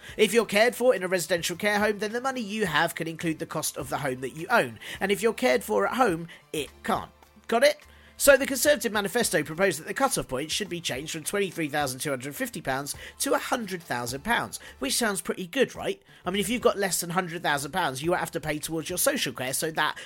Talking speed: 220 wpm